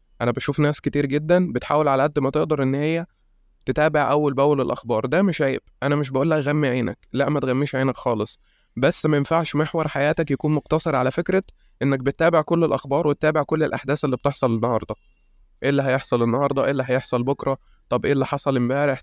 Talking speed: 190 wpm